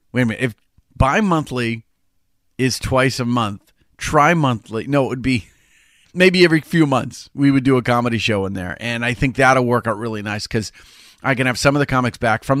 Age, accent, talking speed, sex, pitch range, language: 40-59, American, 210 wpm, male, 105-135 Hz, English